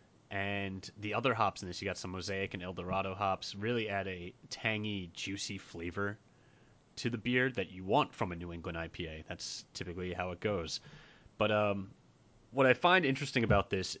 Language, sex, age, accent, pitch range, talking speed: English, male, 30-49, American, 95-115 Hz, 185 wpm